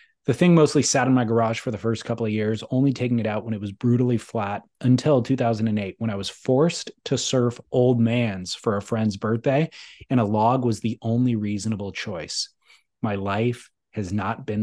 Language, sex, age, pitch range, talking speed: English, male, 20-39, 110-135 Hz, 200 wpm